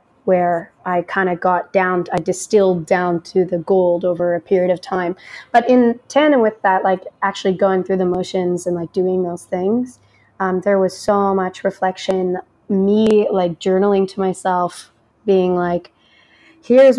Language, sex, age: English, female, 20-39